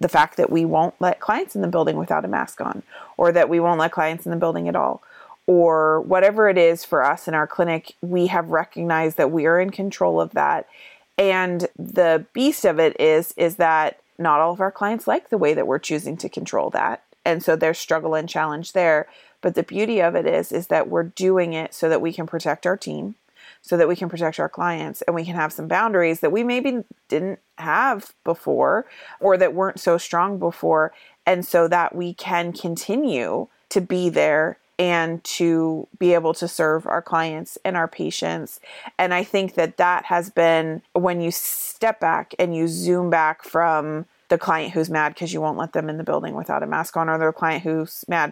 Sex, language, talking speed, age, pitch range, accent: female, English, 215 wpm, 30-49, 160-185 Hz, American